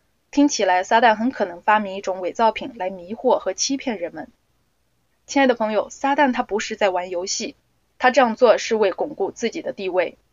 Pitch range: 200-270 Hz